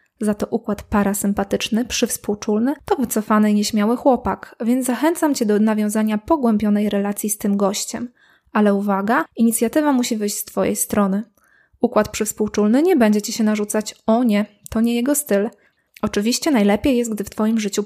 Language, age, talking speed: Polish, 20-39, 160 wpm